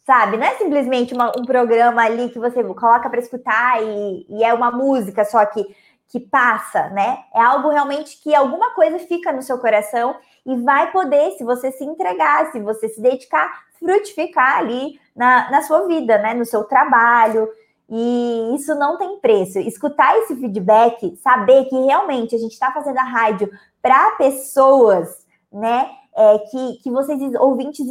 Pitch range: 230-290 Hz